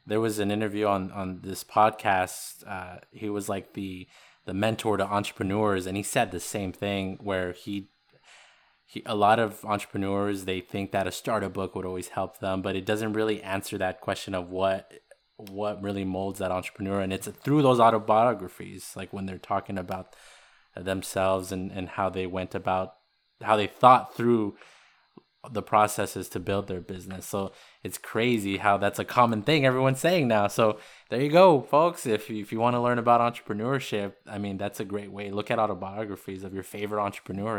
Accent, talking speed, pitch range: American, 190 wpm, 95-115 Hz